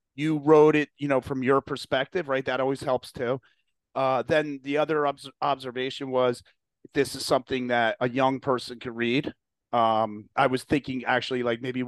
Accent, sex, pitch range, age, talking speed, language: American, male, 130-170 Hz, 30-49, 180 wpm, English